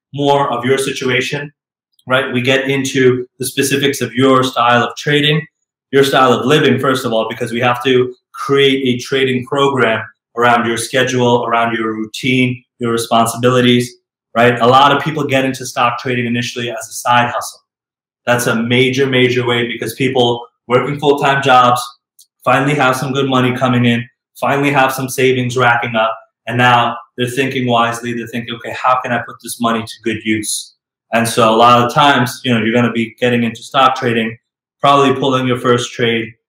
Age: 20-39